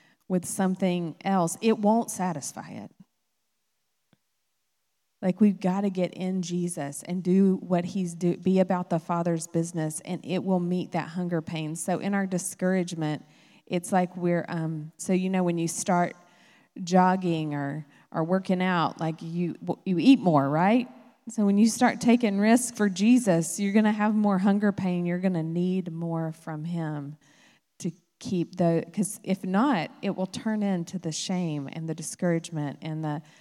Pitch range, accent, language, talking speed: 165-205 Hz, American, English, 170 wpm